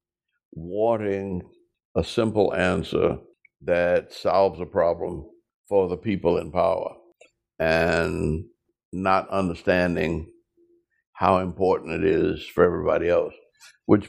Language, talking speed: English, 100 wpm